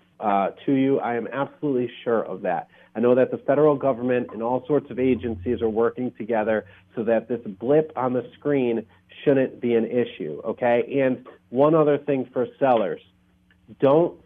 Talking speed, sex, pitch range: 175 wpm, male, 115-135 Hz